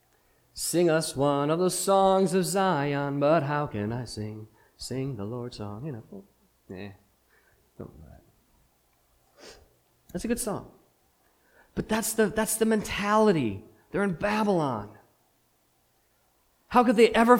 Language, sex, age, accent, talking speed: English, male, 40-59, American, 135 wpm